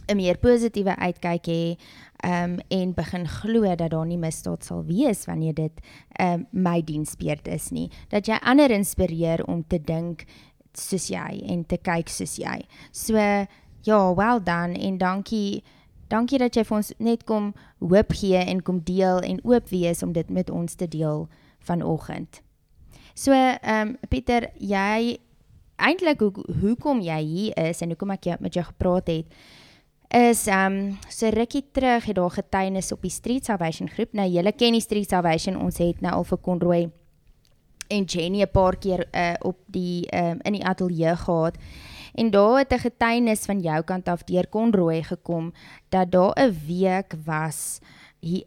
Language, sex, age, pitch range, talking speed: English, female, 20-39, 170-215 Hz, 165 wpm